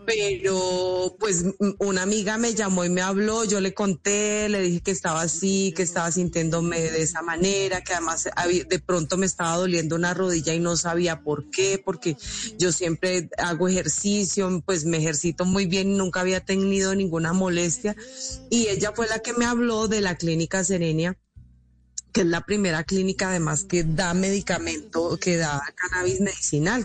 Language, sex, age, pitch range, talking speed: Spanish, female, 30-49, 170-195 Hz, 170 wpm